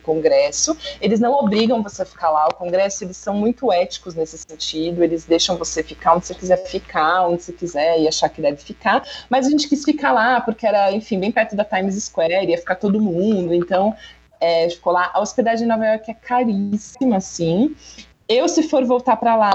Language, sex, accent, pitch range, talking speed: Portuguese, female, Brazilian, 175-240 Hz, 210 wpm